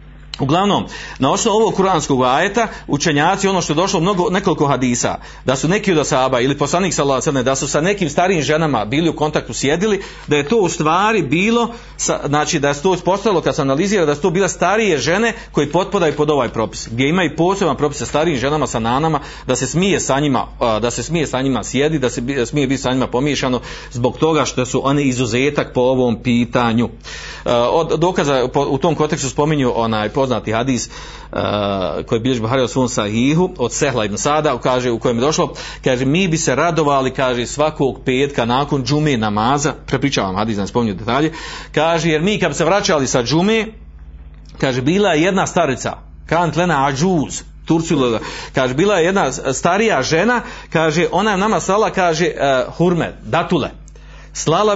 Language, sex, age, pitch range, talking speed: Croatian, male, 40-59, 130-175 Hz, 180 wpm